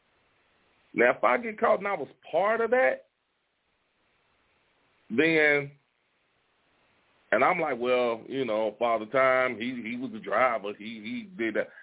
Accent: American